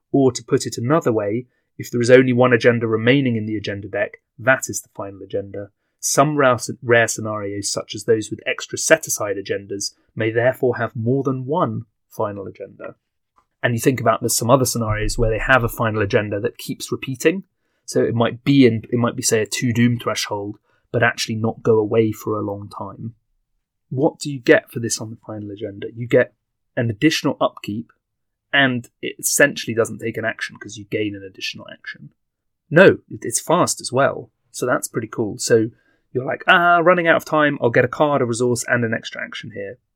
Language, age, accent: English, 30-49, British